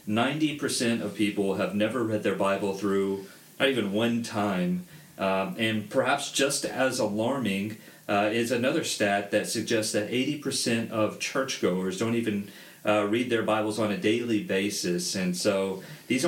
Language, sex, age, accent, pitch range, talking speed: English, male, 40-59, American, 100-115 Hz, 150 wpm